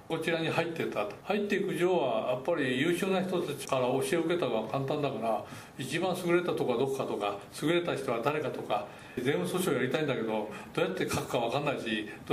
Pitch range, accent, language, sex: 130-175 Hz, native, Japanese, male